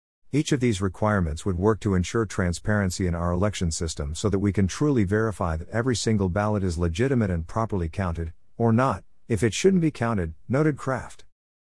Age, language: 50-69, English